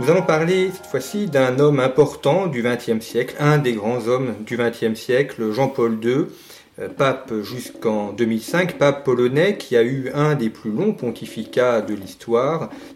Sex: male